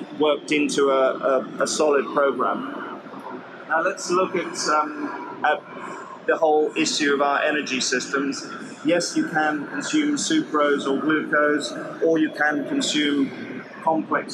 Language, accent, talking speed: English, British, 135 wpm